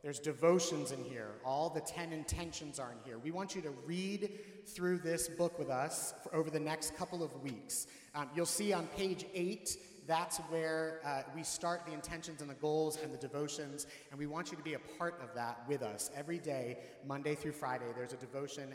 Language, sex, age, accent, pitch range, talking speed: English, male, 30-49, American, 130-165 Hz, 210 wpm